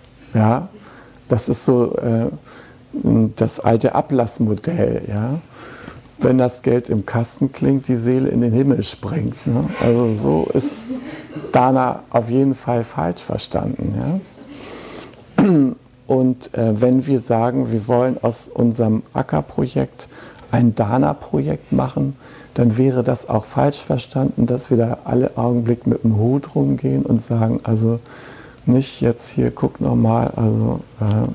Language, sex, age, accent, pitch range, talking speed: German, male, 60-79, German, 115-130 Hz, 135 wpm